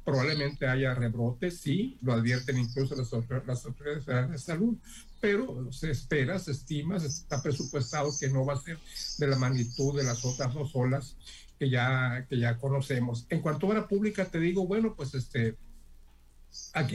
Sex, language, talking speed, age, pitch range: male, Spanish, 170 wpm, 50-69, 125-160 Hz